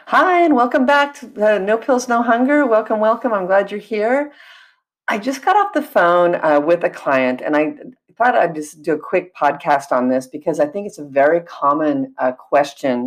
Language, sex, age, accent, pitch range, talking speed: English, female, 50-69, American, 145-220 Hz, 205 wpm